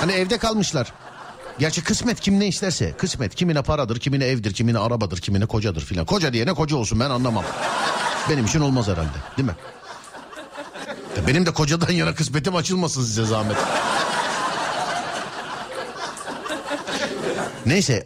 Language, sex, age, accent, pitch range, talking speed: Turkish, male, 50-69, native, 115-170 Hz, 130 wpm